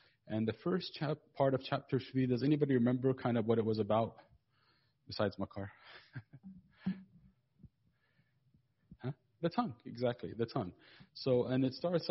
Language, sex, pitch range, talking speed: English, male, 110-140 Hz, 145 wpm